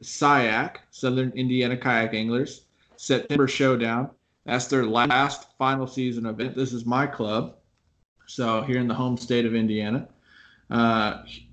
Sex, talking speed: male, 135 wpm